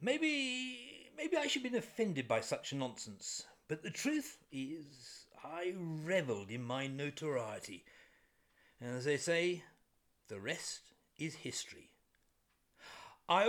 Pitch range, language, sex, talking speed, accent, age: 155-225 Hz, English, male, 125 wpm, British, 50-69